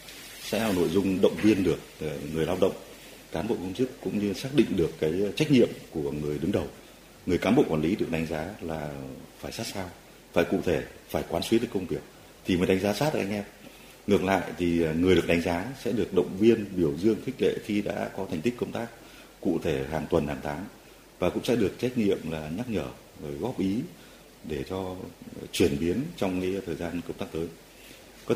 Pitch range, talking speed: 80-100 Hz, 225 wpm